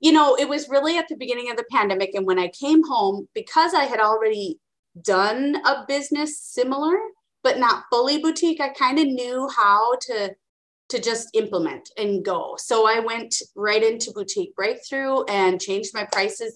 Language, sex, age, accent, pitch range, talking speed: English, female, 30-49, American, 190-290 Hz, 180 wpm